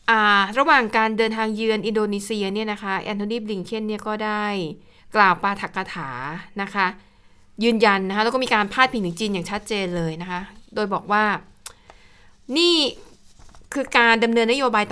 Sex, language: female, Thai